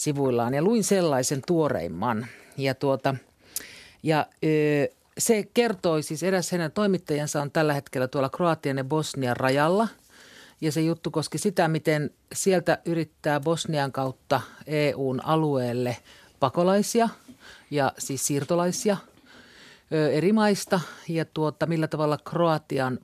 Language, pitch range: Finnish, 135-170 Hz